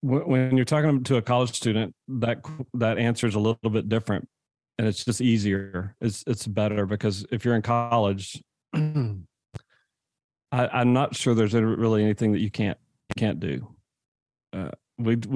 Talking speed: 155 wpm